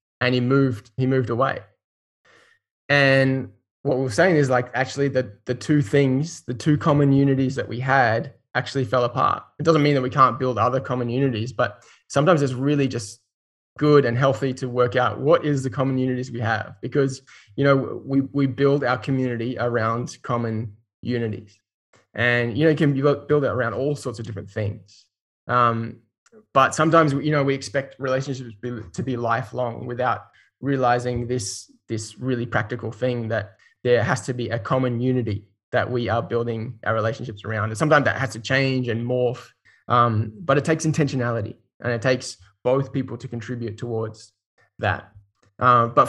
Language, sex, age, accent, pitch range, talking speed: English, male, 20-39, Australian, 115-135 Hz, 180 wpm